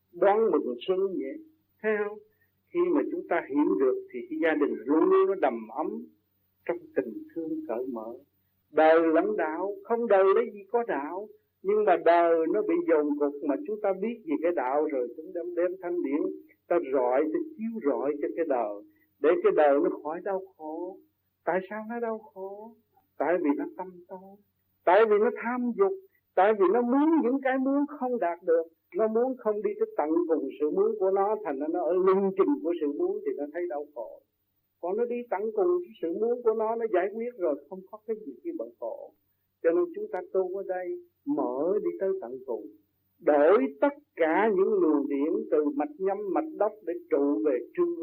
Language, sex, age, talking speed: Vietnamese, male, 60-79, 205 wpm